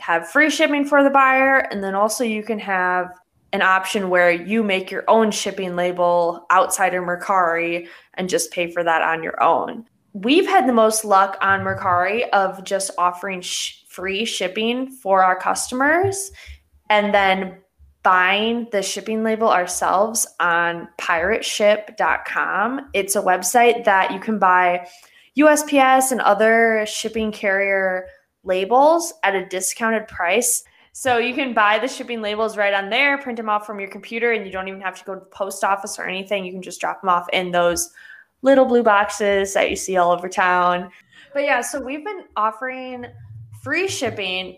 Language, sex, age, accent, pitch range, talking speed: English, female, 20-39, American, 180-230 Hz, 170 wpm